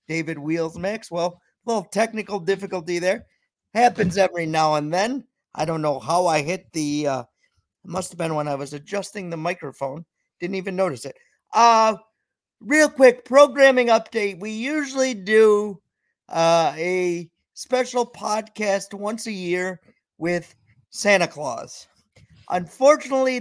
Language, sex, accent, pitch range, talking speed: English, male, American, 165-220 Hz, 140 wpm